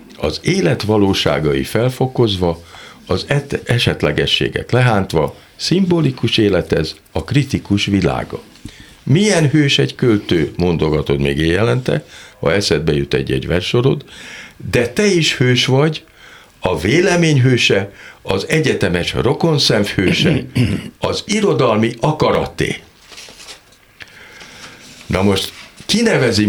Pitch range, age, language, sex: 95-140 Hz, 60-79, Hungarian, male